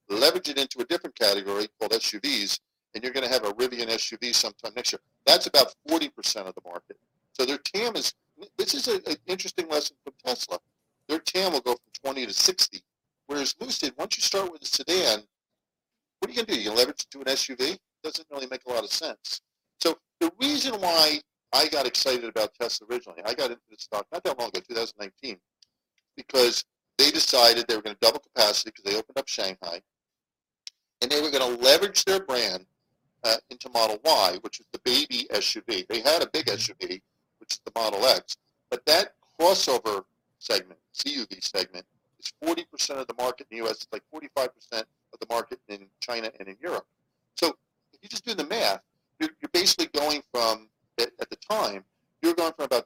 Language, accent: English, American